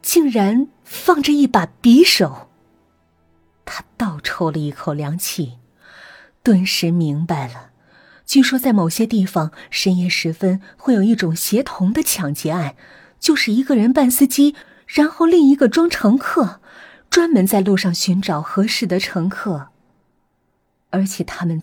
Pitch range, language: 170-240 Hz, Chinese